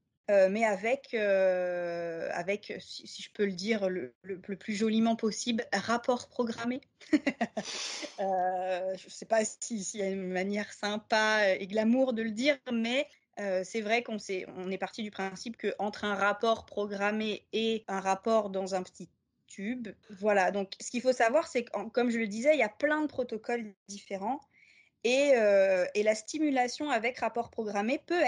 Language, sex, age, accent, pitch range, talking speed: French, female, 20-39, French, 190-240 Hz, 180 wpm